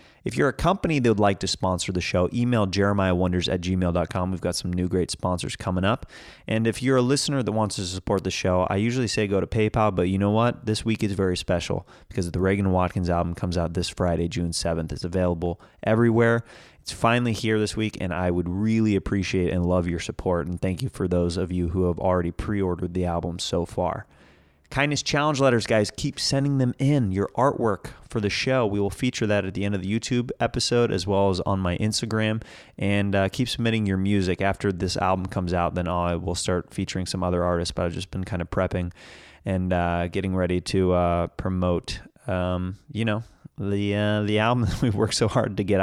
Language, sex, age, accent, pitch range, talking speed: English, male, 30-49, American, 90-110 Hz, 220 wpm